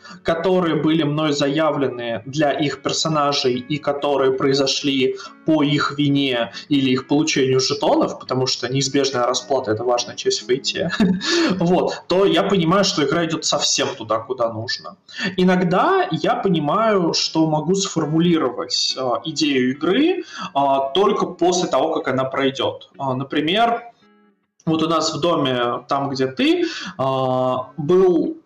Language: Russian